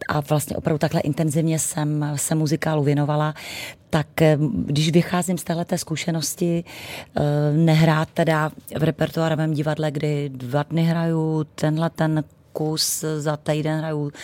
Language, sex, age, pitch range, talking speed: Czech, female, 30-49, 150-165 Hz, 125 wpm